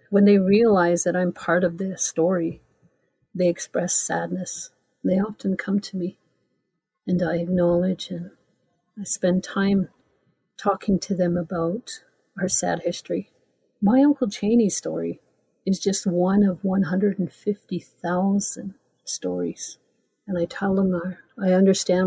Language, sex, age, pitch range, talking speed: English, female, 50-69, 180-205 Hz, 130 wpm